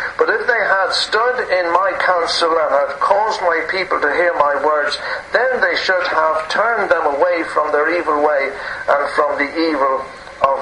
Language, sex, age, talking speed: English, male, 60-79, 185 wpm